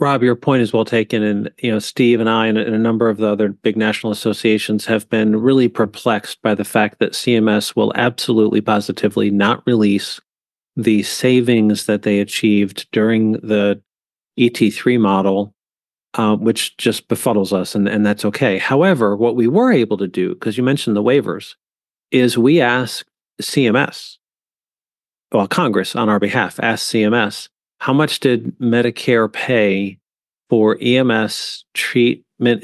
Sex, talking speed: male, 155 wpm